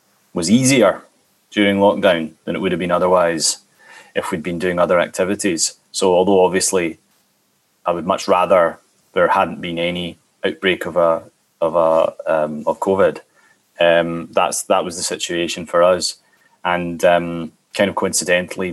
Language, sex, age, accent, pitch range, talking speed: English, male, 30-49, British, 85-100 Hz, 155 wpm